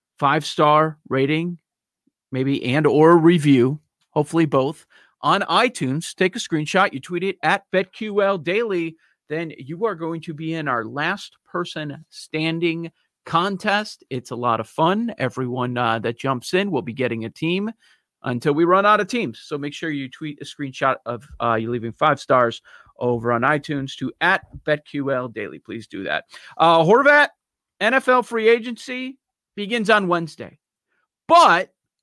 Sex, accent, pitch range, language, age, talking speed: male, American, 150-200 Hz, English, 40-59, 160 wpm